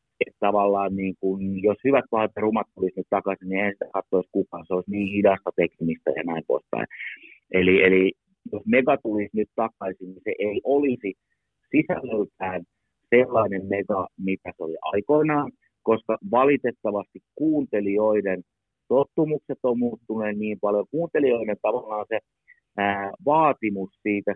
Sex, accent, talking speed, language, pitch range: male, native, 130 wpm, Finnish, 95-110 Hz